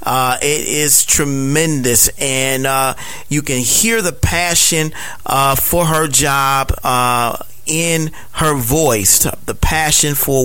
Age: 40-59